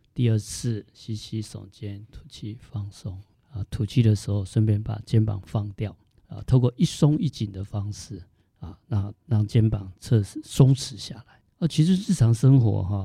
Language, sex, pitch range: Chinese, male, 100-115 Hz